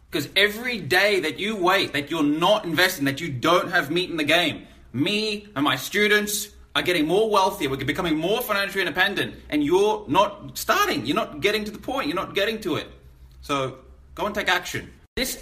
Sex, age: male, 30-49